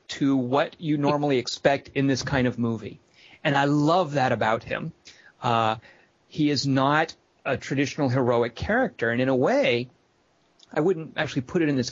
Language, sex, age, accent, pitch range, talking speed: English, male, 40-59, American, 125-165 Hz, 175 wpm